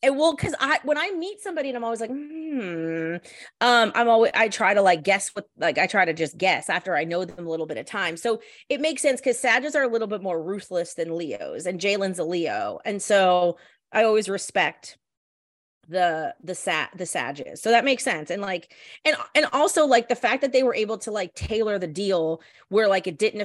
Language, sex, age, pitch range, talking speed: English, female, 30-49, 175-235 Hz, 230 wpm